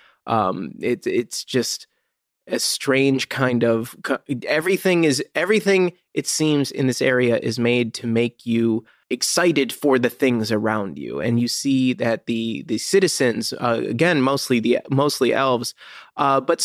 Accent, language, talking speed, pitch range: American, English, 150 wpm, 120-165 Hz